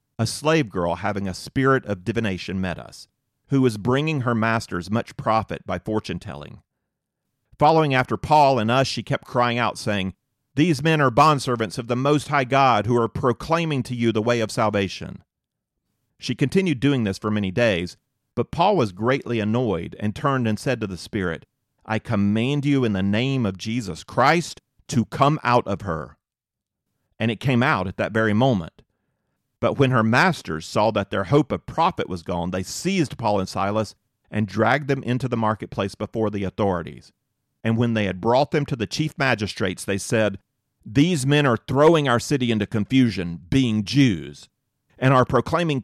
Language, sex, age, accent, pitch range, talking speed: English, male, 40-59, American, 105-135 Hz, 180 wpm